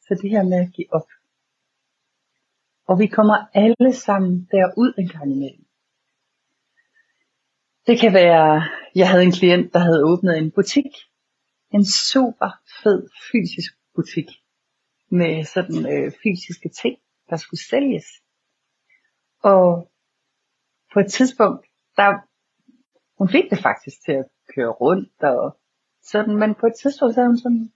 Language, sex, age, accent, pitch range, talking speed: Danish, female, 60-79, native, 170-210 Hz, 125 wpm